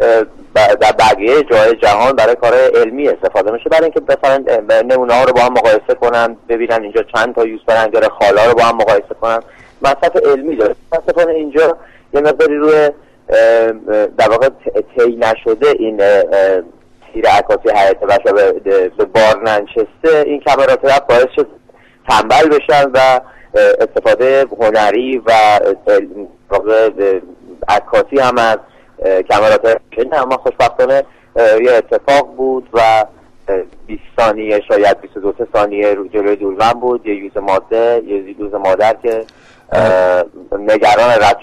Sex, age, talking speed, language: male, 30-49, 135 wpm, Persian